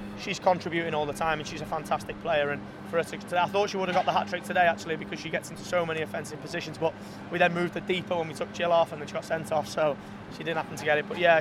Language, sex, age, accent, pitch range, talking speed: English, male, 30-49, British, 160-180 Hz, 310 wpm